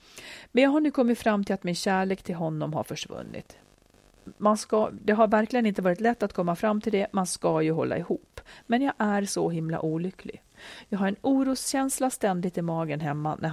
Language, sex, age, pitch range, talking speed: Swedish, female, 40-59, 170-230 Hz, 200 wpm